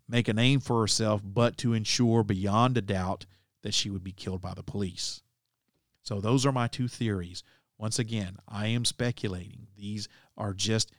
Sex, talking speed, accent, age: male, 180 wpm, American, 40-59